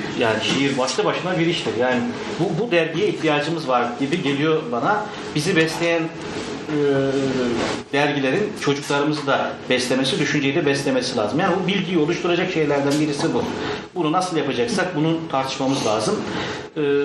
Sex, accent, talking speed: male, native, 135 wpm